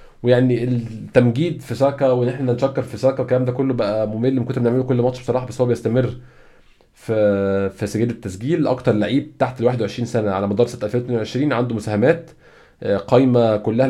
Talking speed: 175 wpm